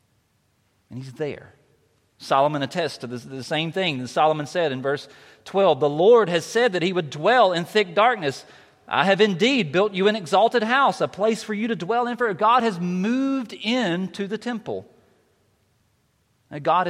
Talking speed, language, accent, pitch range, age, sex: 175 wpm, English, American, 115-195 Hz, 40-59, male